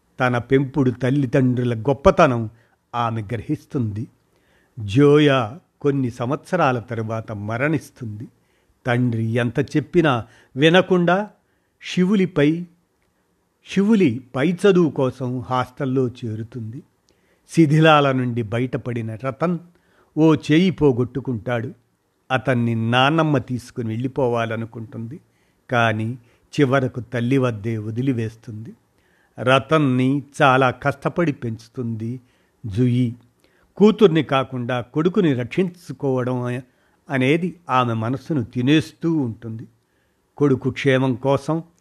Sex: male